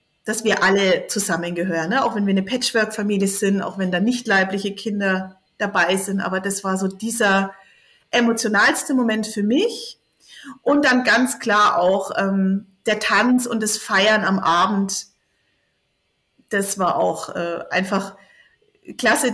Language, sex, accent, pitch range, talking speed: German, female, German, 195-245 Hz, 145 wpm